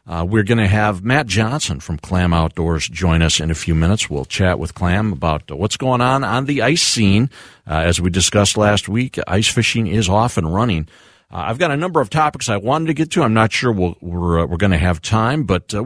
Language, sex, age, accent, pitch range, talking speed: English, male, 50-69, American, 85-115 Hz, 250 wpm